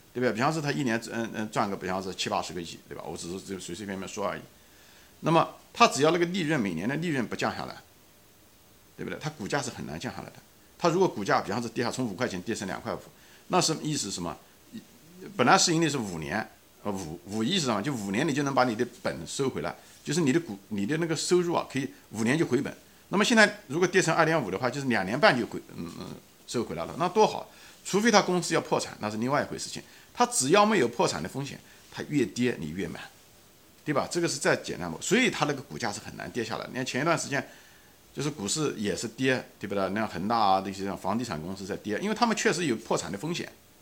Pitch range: 105-170 Hz